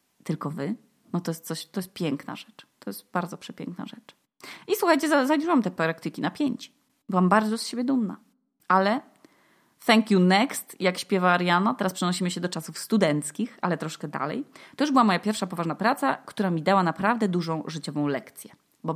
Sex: female